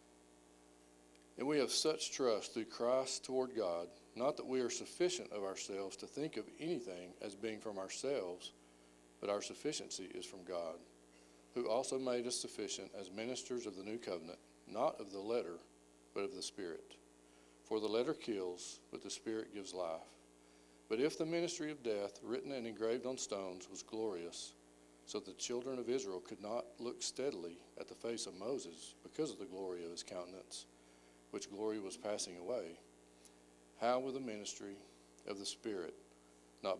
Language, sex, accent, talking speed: English, male, American, 170 wpm